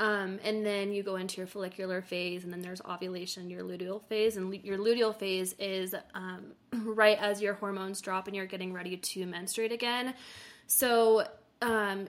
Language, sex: English, female